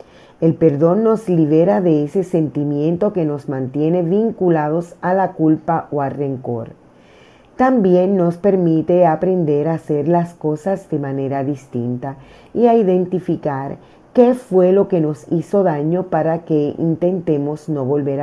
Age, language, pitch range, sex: 40-59, Spanish, 145-185 Hz, female